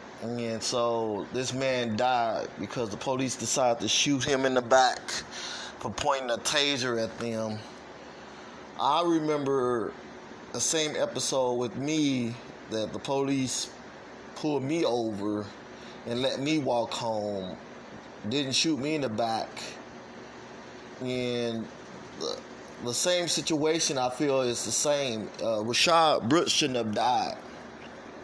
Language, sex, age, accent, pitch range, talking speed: English, male, 20-39, American, 120-145 Hz, 130 wpm